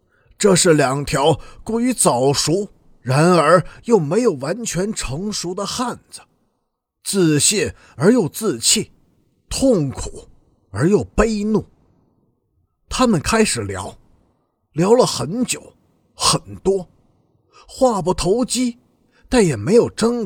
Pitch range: 145-220 Hz